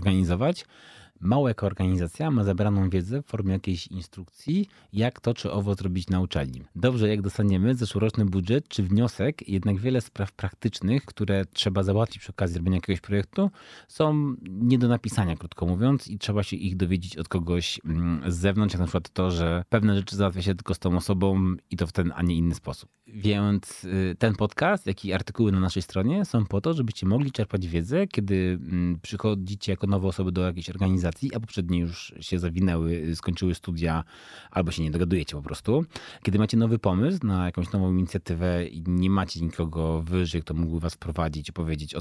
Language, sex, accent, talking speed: Polish, male, native, 185 wpm